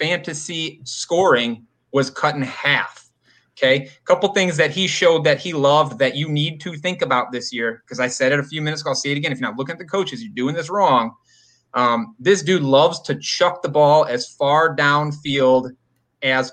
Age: 30-49